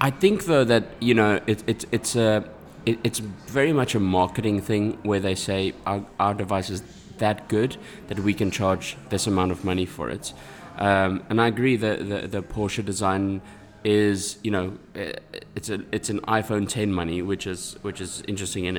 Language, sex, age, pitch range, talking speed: English, male, 20-39, 95-115 Hz, 195 wpm